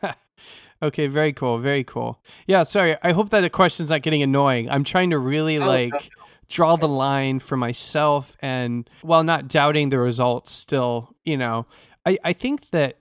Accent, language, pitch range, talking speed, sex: American, English, 125-155 Hz, 175 wpm, male